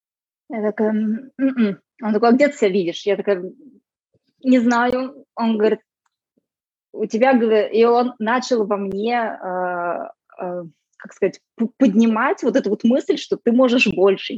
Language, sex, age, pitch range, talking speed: Russian, female, 20-39, 185-240 Hz, 140 wpm